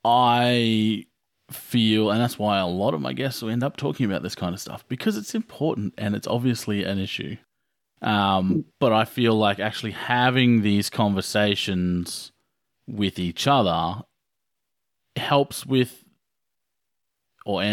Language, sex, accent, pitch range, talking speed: English, male, Australian, 95-120 Hz, 140 wpm